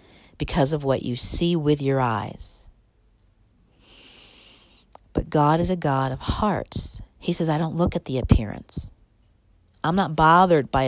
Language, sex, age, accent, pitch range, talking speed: English, female, 40-59, American, 110-165 Hz, 150 wpm